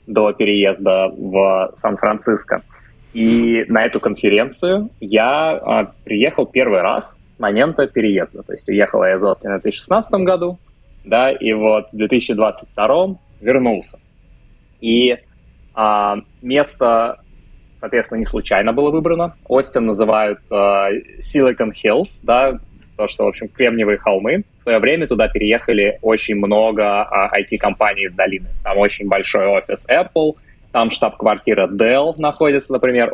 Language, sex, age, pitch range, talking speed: Russian, male, 20-39, 105-140 Hz, 130 wpm